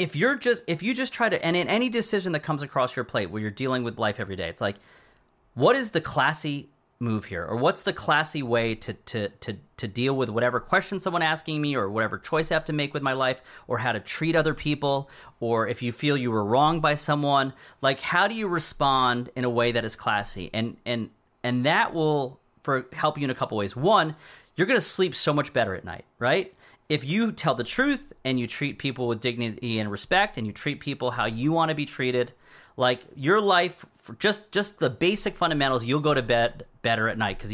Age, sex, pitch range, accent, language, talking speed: 30-49, male, 120-160 Hz, American, English, 235 wpm